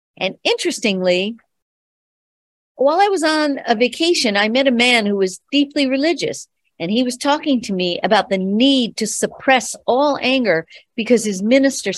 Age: 50-69